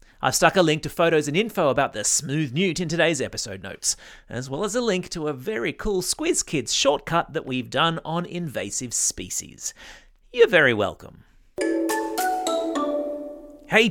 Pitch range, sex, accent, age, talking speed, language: 130-195 Hz, male, Australian, 30-49, 165 wpm, English